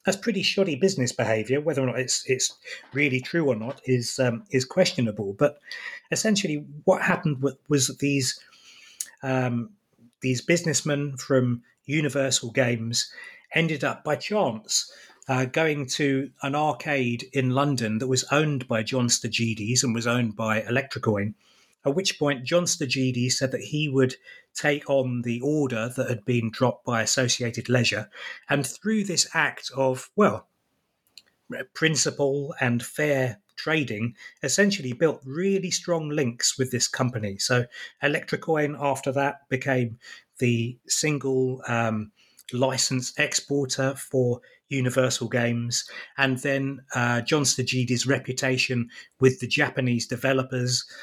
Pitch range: 120-145 Hz